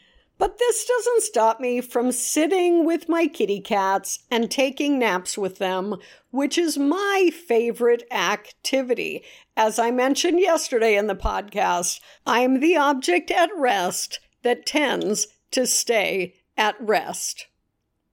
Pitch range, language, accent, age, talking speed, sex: 225-275 Hz, English, American, 50-69, 130 wpm, female